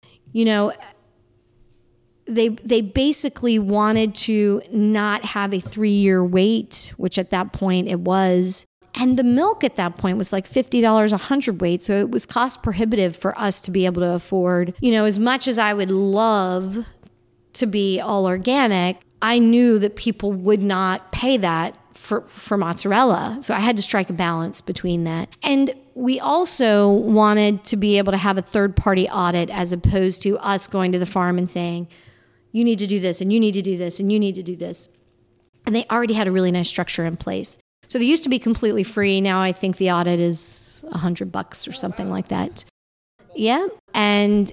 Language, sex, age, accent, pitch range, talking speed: English, female, 40-59, American, 180-220 Hz, 195 wpm